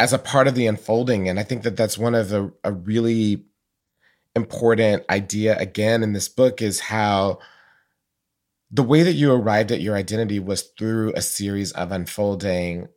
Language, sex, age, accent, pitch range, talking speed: English, male, 30-49, American, 95-115 Hz, 170 wpm